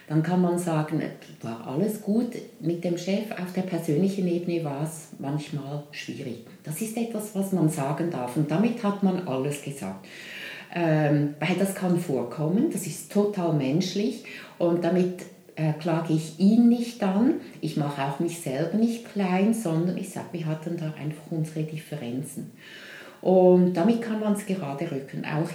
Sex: female